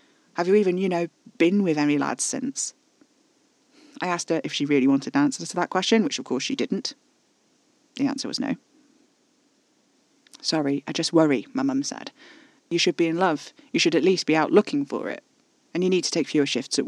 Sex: female